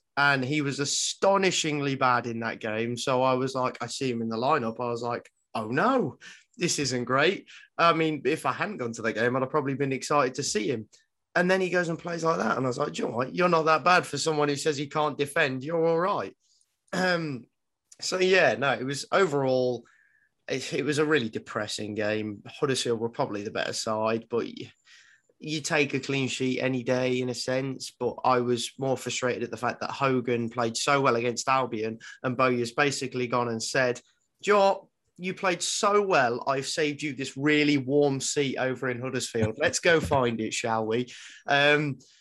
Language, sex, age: English, male, 20-39